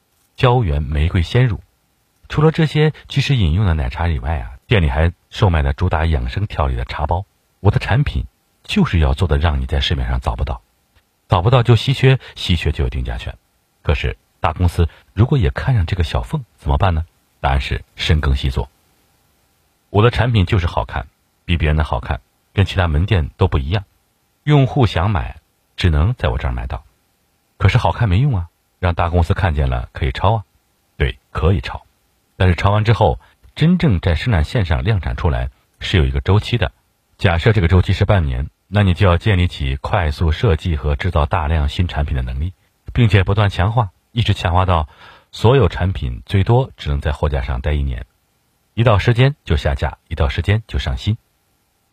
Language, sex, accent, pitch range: Chinese, male, native, 75-105 Hz